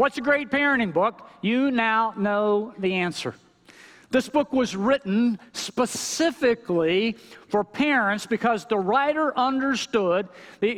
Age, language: 50-69, English